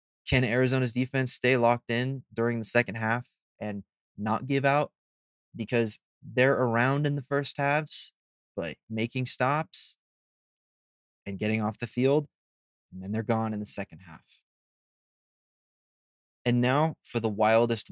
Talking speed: 140 wpm